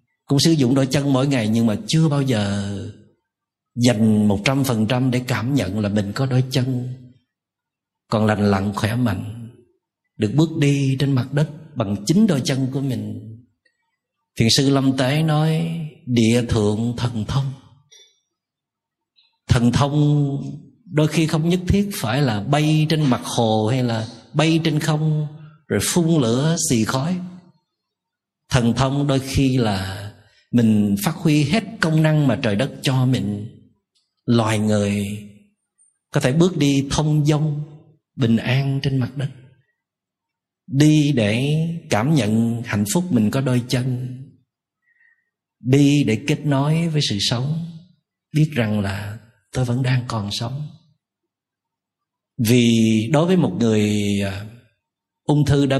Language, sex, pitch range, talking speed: Vietnamese, male, 115-150 Hz, 145 wpm